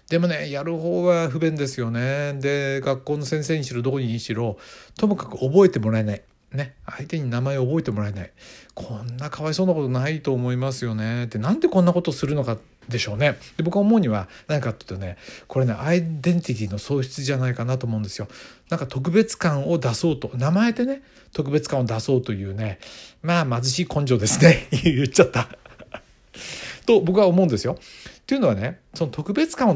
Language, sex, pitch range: Japanese, male, 120-170 Hz